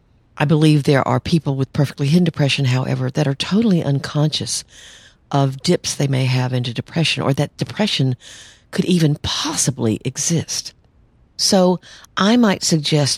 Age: 50-69